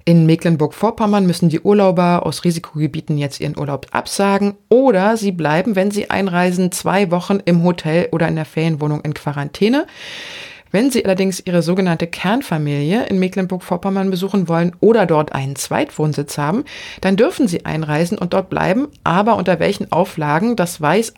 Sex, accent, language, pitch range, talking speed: female, German, German, 155-200 Hz, 155 wpm